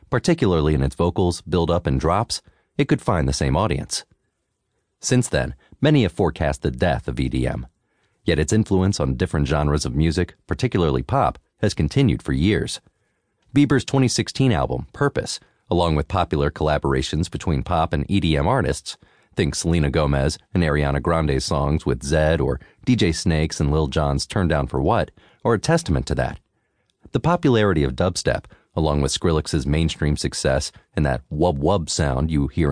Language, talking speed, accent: English, 160 wpm, American